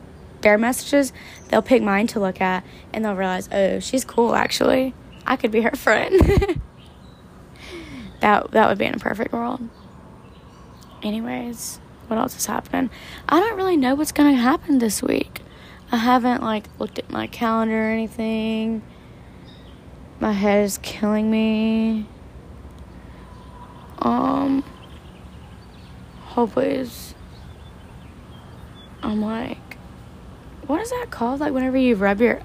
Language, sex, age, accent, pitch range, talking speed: English, female, 10-29, American, 205-260 Hz, 130 wpm